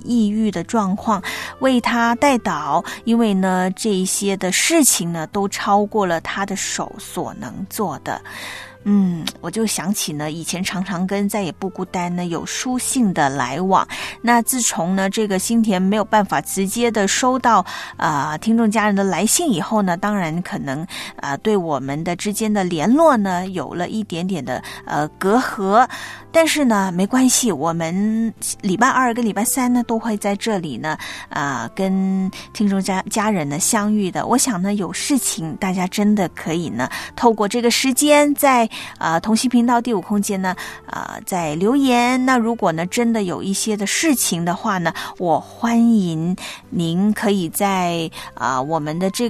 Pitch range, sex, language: 180-230 Hz, female, Chinese